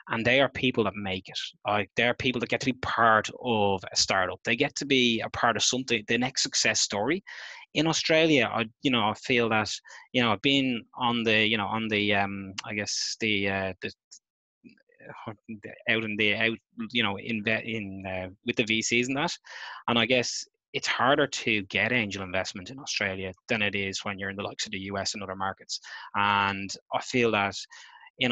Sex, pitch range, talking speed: male, 100-120 Hz, 210 wpm